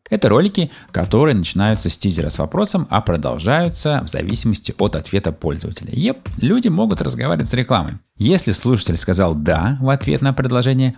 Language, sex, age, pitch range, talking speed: Russian, male, 30-49, 85-125 Hz, 160 wpm